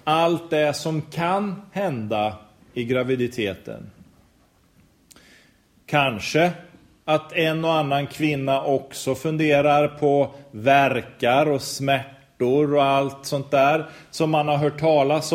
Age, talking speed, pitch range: 30-49, 110 wpm, 135-185 Hz